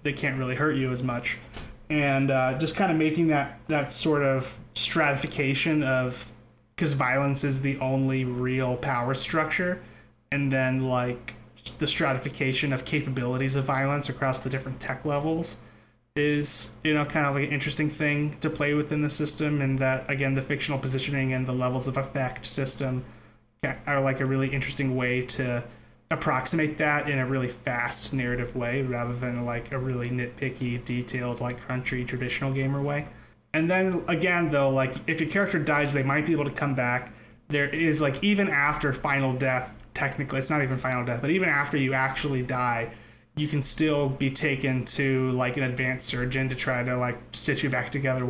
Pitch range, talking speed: 125-145 Hz, 185 wpm